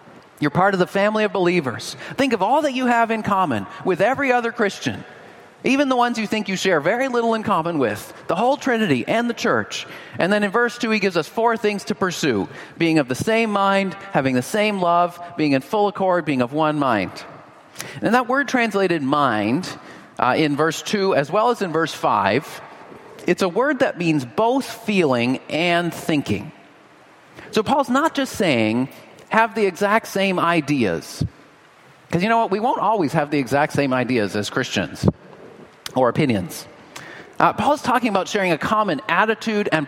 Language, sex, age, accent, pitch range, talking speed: English, male, 40-59, American, 150-225 Hz, 190 wpm